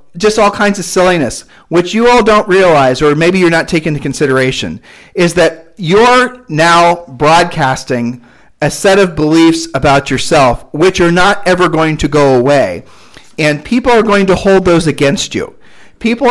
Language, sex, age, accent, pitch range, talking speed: English, male, 40-59, American, 145-175 Hz, 170 wpm